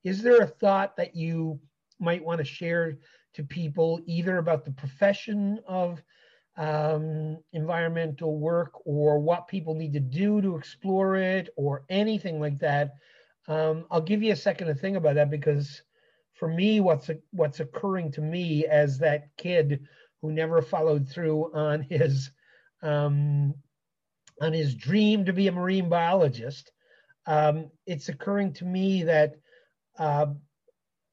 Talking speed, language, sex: 150 wpm, English, male